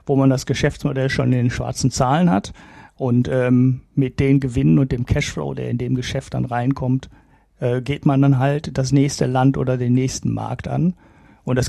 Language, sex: German, male